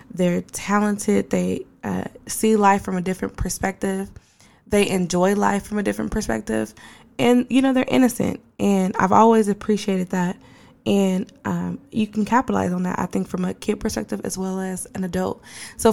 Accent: American